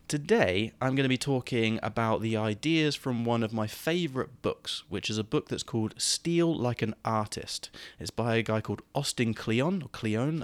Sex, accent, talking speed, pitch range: male, British, 190 wpm, 100-120 Hz